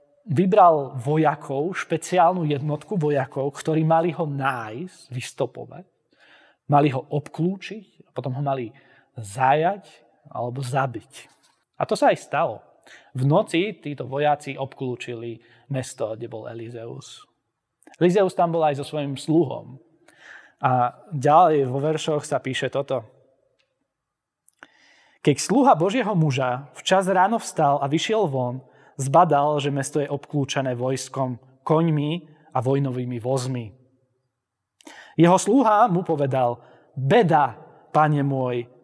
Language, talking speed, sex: Slovak, 115 wpm, male